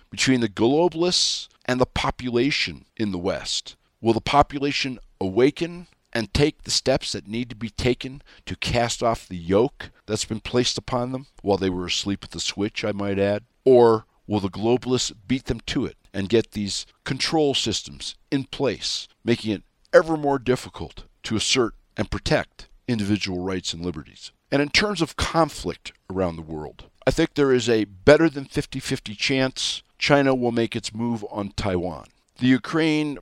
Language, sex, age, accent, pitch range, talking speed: English, male, 50-69, American, 100-125 Hz, 170 wpm